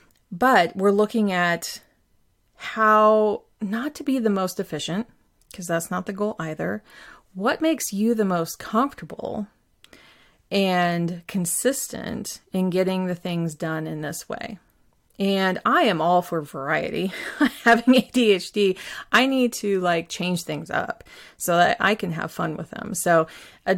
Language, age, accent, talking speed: English, 30-49, American, 145 wpm